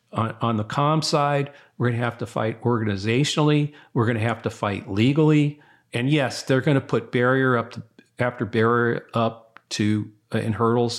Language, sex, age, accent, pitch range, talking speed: English, male, 40-59, American, 115-135 Hz, 185 wpm